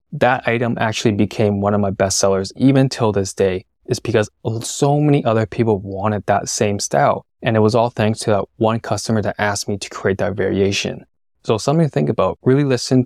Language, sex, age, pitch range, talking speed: English, male, 20-39, 105-125 Hz, 210 wpm